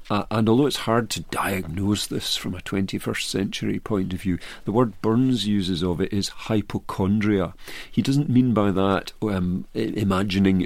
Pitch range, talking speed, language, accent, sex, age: 100-120 Hz, 170 wpm, English, British, male, 50-69